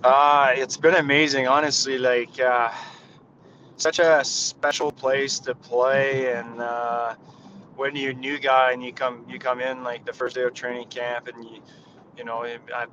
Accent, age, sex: American, 20-39, male